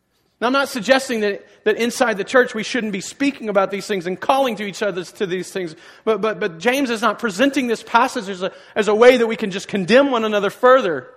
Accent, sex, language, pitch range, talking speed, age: American, male, English, 210-265 Hz, 245 wpm, 40-59